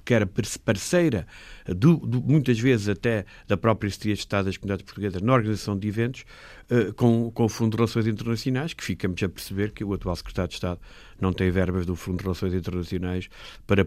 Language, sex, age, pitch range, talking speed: Portuguese, male, 50-69, 95-130 Hz, 205 wpm